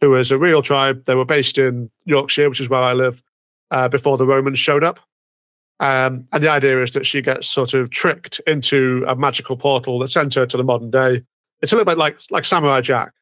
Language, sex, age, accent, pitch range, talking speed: English, male, 40-59, British, 125-140 Hz, 230 wpm